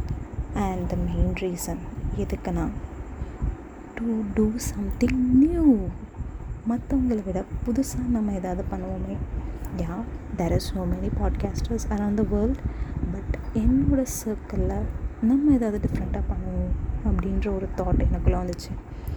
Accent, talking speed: native, 115 wpm